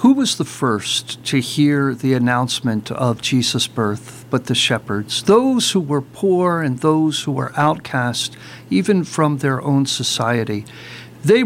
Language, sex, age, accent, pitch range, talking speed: English, male, 50-69, American, 125-165 Hz, 150 wpm